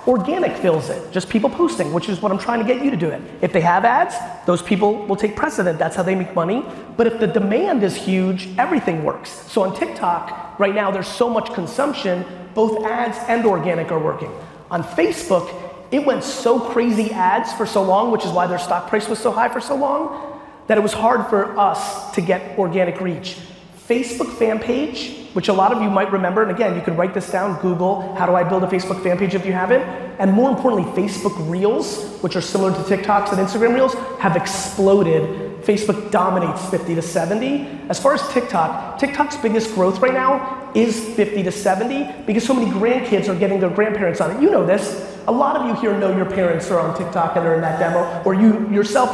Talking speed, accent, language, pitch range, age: 220 wpm, American, English, 185-230 Hz, 30-49